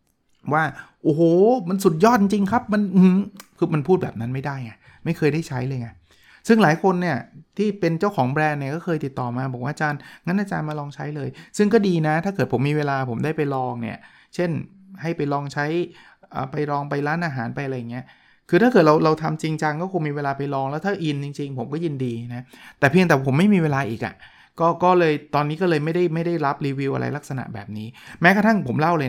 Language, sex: Thai, male